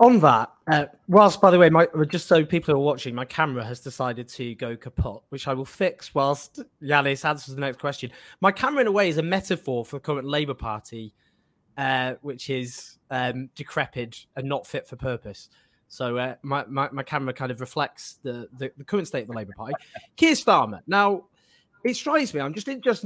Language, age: English, 20-39